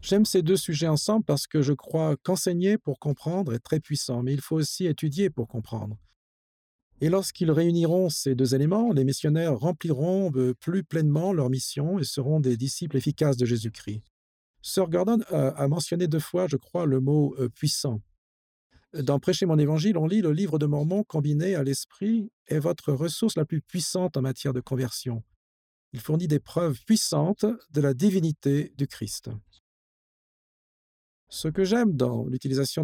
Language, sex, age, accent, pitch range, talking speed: English, male, 50-69, French, 130-180 Hz, 170 wpm